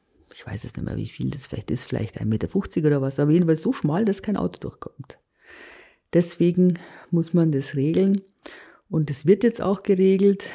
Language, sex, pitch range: German, female, 145-195 Hz